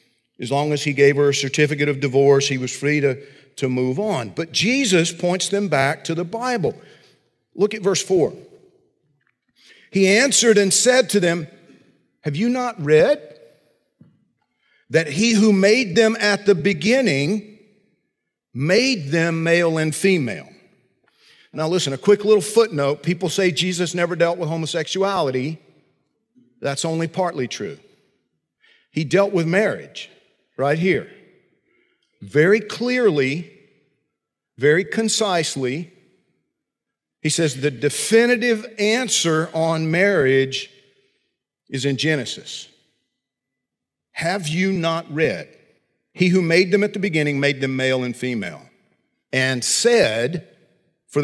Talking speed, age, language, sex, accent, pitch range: 125 wpm, 50-69, English, male, American, 145-205 Hz